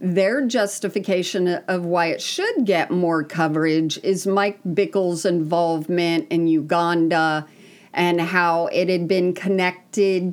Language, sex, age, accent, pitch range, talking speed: English, female, 50-69, American, 165-200 Hz, 120 wpm